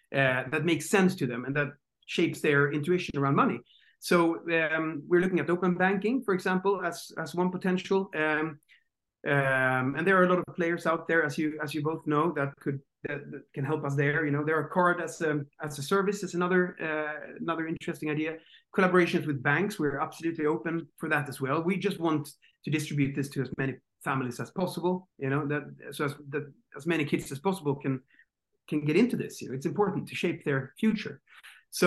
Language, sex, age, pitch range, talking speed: English, male, 30-49, 140-175 Hz, 215 wpm